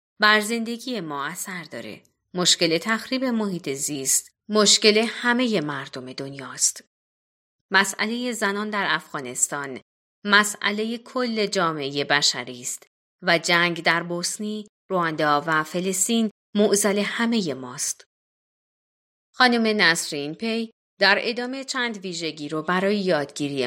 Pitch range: 155-220 Hz